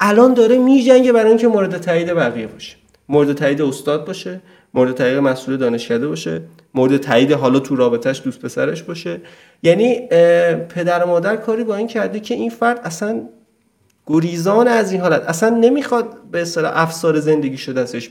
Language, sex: Persian, male